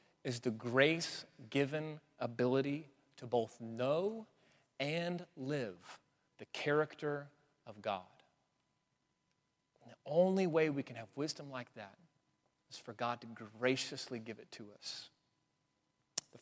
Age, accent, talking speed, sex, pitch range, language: 30-49, American, 125 wpm, male, 145-195 Hz, English